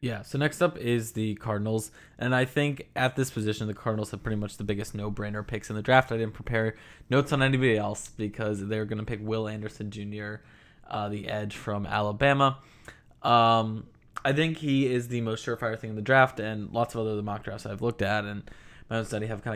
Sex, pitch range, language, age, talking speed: male, 105-130 Hz, English, 20-39, 220 wpm